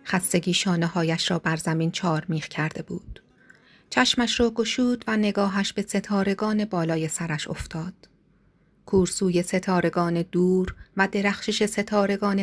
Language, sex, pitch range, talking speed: Persian, female, 175-210 Hz, 120 wpm